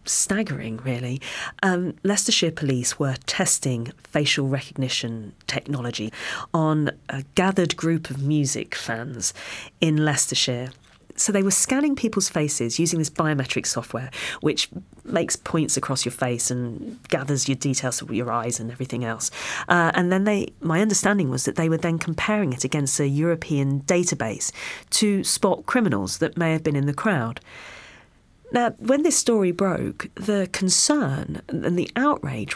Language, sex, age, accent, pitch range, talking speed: English, female, 40-59, British, 130-190 Hz, 150 wpm